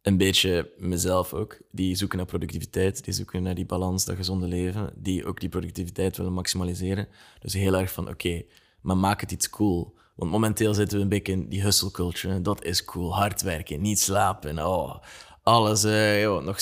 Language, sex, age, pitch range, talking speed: Dutch, male, 20-39, 90-105 Hz, 200 wpm